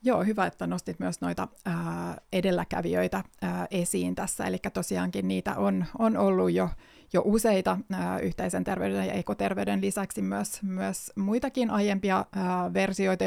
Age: 30-49